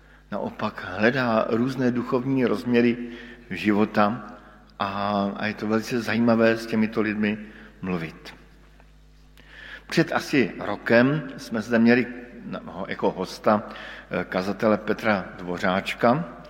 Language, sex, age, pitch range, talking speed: Slovak, male, 50-69, 105-135 Hz, 95 wpm